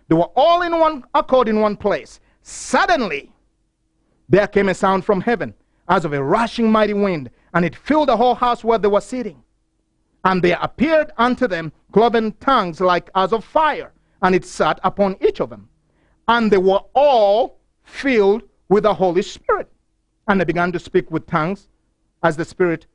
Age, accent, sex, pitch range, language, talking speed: 50-69, Nigerian, male, 190-270 Hz, English, 180 wpm